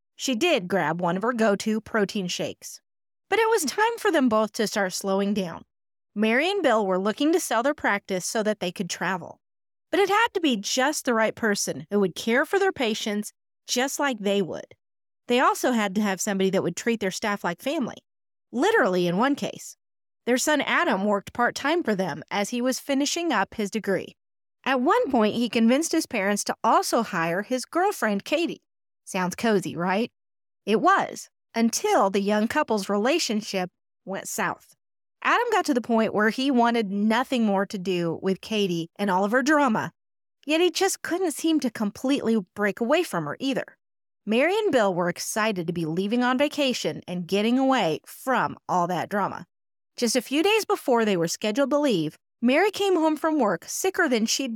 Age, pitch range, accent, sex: 30-49, 195-280 Hz, American, female